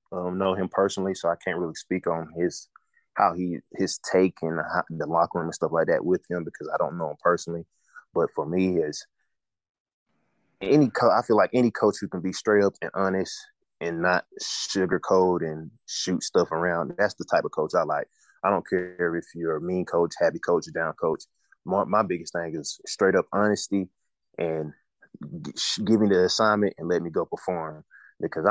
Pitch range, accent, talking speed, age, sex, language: 85-100 Hz, American, 200 wpm, 20-39, male, English